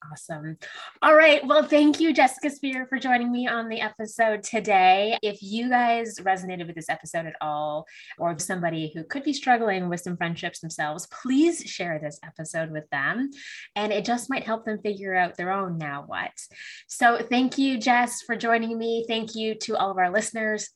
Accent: American